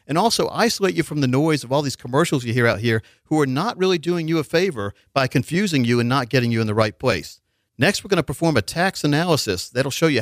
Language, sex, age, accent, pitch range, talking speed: English, male, 50-69, American, 115-160 Hz, 270 wpm